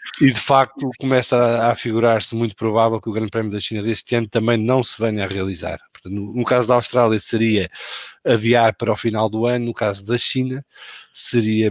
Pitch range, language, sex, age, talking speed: 105-130 Hz, English, male, 20-39, 215 wpm